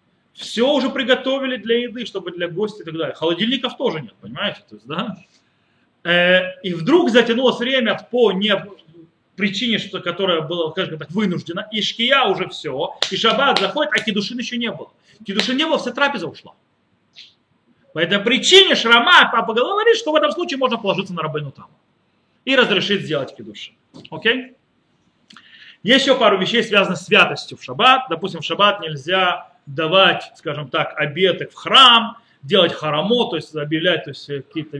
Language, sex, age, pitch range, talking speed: Russian, male, 30-49, 165-235 Hz, 165 wpm